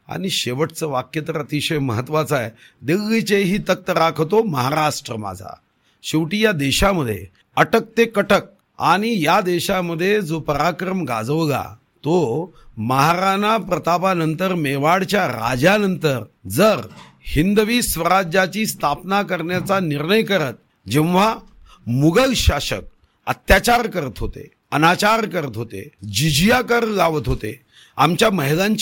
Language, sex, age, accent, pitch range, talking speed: Marathi, male, 50-69, native, 140-200 Hz, 110 wpm